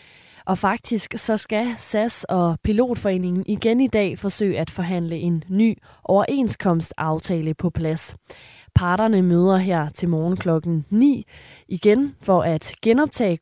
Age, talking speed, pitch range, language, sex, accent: 20-39, 130 wpm, 165-200 Hz, Danish, female, native